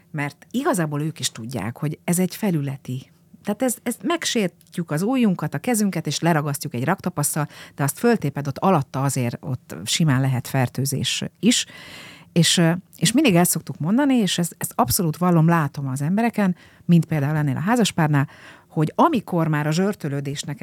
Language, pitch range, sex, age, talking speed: Hungarian, 145-185 Hz, female, 50-69, 160 wpm